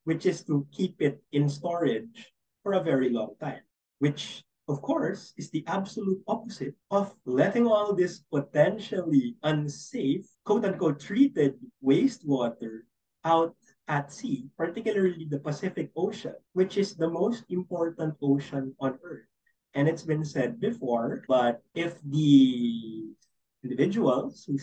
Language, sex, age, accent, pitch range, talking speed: English, male, 30-49, Filipino, 135-185 Hz, 130 wpm